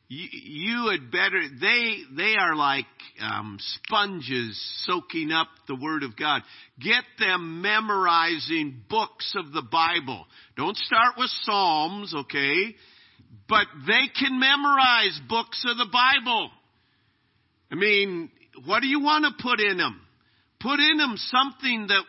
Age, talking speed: 50-69, 135 wpm